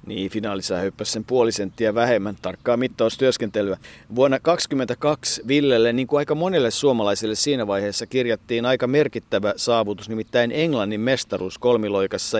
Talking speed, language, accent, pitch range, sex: 125 wpm, Finnish, native, 105-130 Hz, male